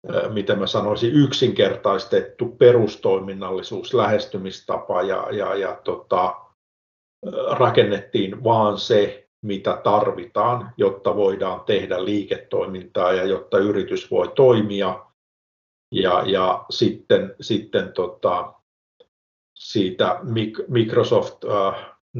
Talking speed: 85 wpm